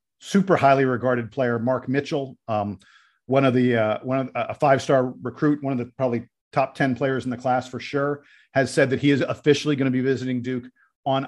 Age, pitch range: 50-69, 125-145 Hz